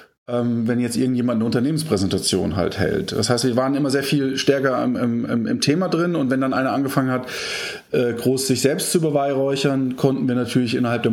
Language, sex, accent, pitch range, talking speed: German, male, German, 120-150 Hz, 200 wpm